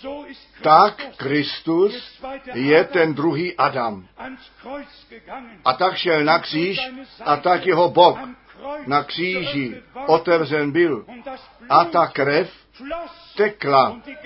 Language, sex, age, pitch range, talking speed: Czech, male, 60-79, 145-230 Hz, 95 wpm